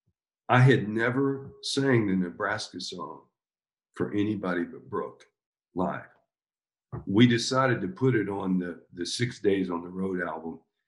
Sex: male